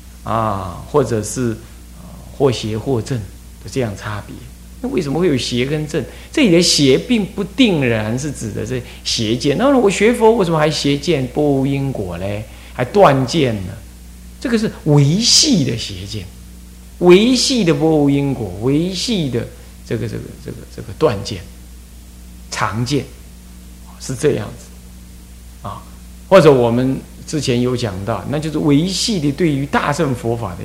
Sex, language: male, Chinese